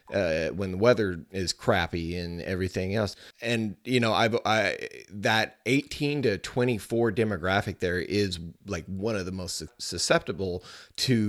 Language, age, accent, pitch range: English, 30-49, American, 90-110 Hz